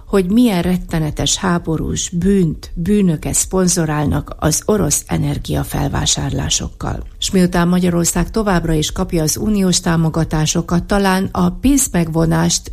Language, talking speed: Hungarian, 105 wpm